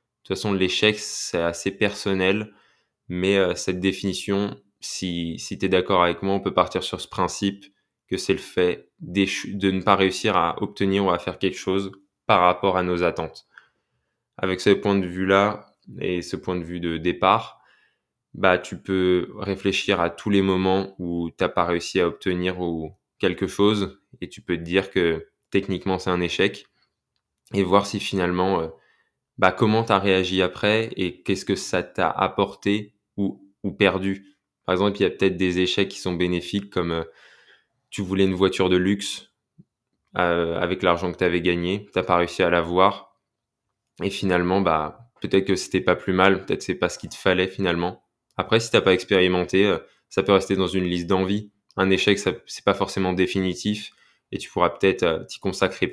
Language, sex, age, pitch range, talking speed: French, male, 20-39, 90-100 Hz, 195 wpm